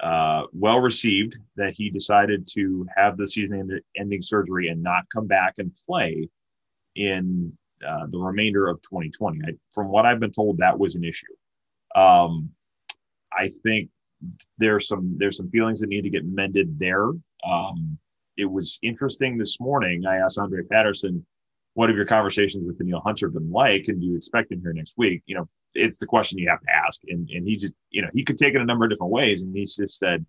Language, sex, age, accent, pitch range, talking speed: English, male, 30-49, American, 90-115 Hz, 200 wpm